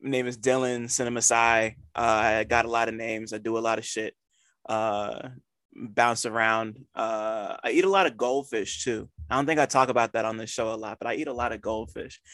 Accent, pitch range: American, 115-130 Hz